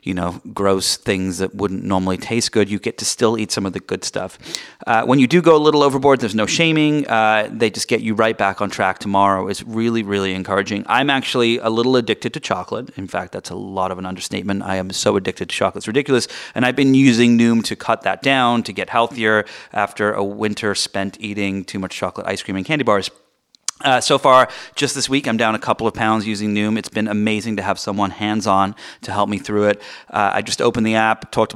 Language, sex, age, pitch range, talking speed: English, male, 30-49, 100-130 Hz, 240 wpm